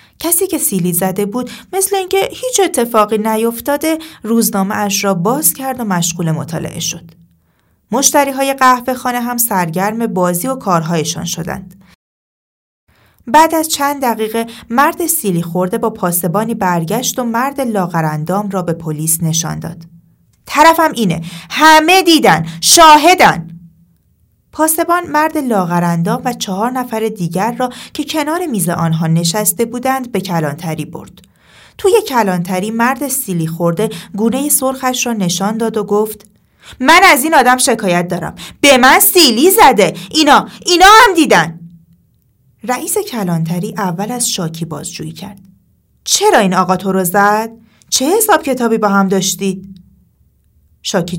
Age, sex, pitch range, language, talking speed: 30-49, female, 175-265 Hz, Persian, 135 wpm